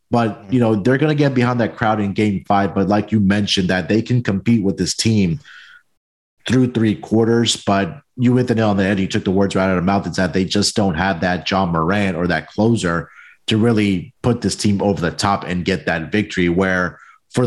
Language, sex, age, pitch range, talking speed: English, male, 30-49, 95-115 Hz, 240 wpm